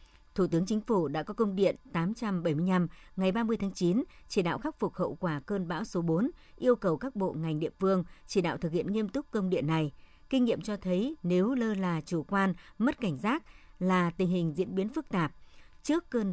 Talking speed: 220 wpm